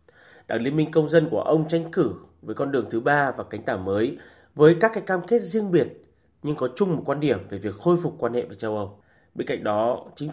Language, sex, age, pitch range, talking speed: Vietnamese, male, 30-49, 120-170 Hz, 255 wpm